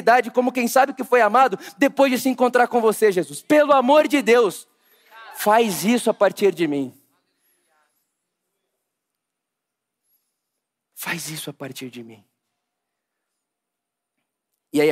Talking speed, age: 125 wpm, 20-39